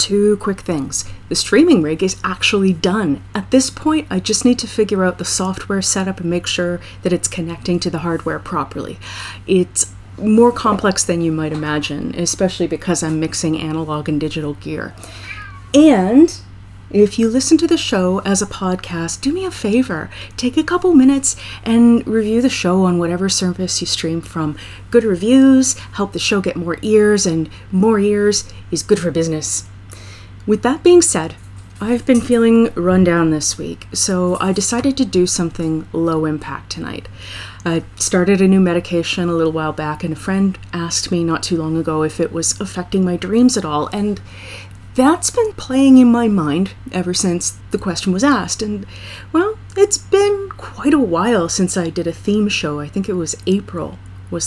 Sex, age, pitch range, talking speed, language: female, 30-49, 155-210 Hz, 185 wpm, English